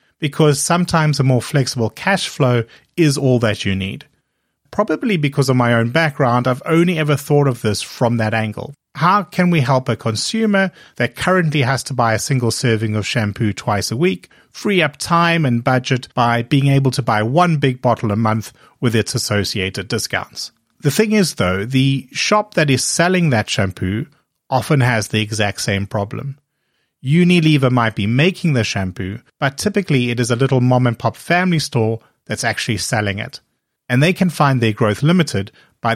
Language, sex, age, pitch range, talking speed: English, male, 30-49, 110-150 Hz, 185 wpm